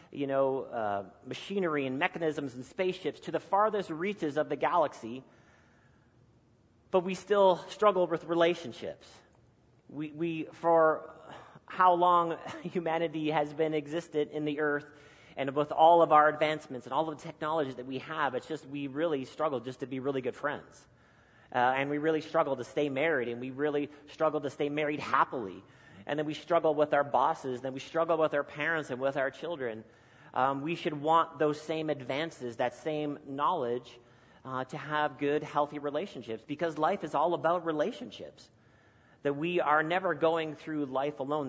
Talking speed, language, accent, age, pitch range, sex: 175 wpm, English, American, 40-59, 125-160 Hz, male